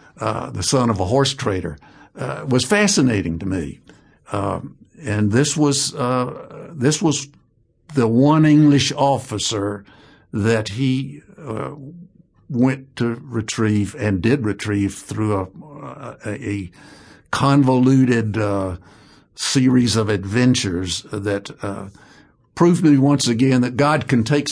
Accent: American